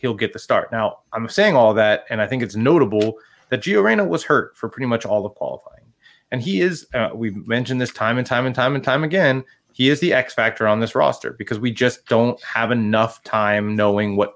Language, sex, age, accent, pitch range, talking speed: English, male, 30-49, American, 105-125 Hz, 240 wpm